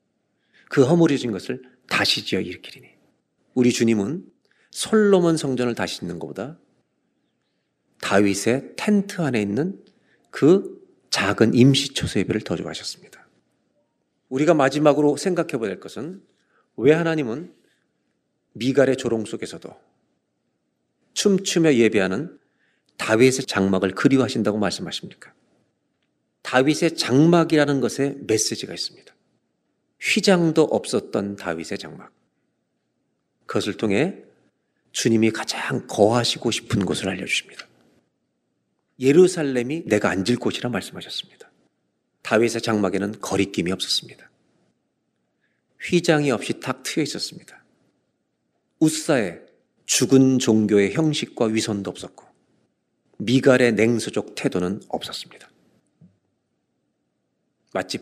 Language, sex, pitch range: Korean, male, 110-150 Hz